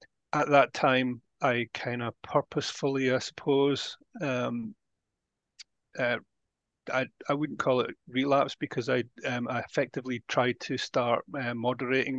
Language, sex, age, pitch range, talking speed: English, male, 30-49, 120-135 Hz, 135 wpm